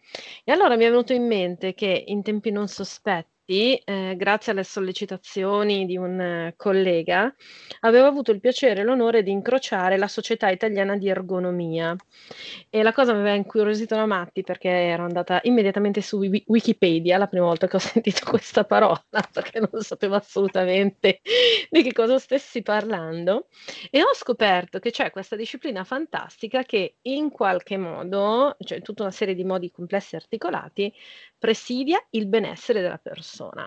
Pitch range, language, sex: 185-235 Hz, Italian, female